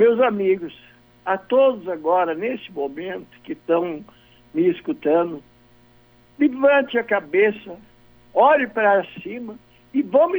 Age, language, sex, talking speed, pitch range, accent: 60-79, Portuguese, male, 110 wpm, 150-245 Hz, Brazilian